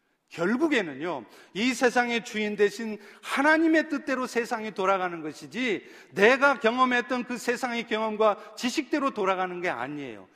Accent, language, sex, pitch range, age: native, Korean, male, 200-265 Hz, 40-59